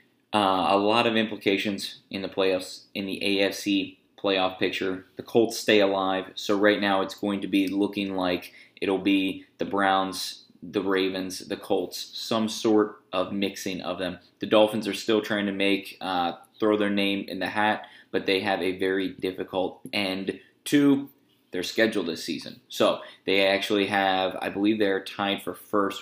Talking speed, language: 175 wpm, English